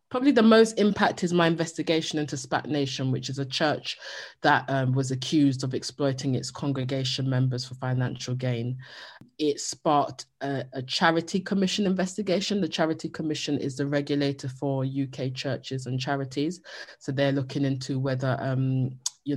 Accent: British